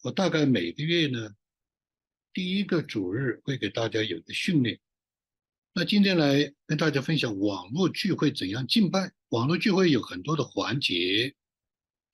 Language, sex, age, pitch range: Chinese, male, 60-79, 110-155 Hz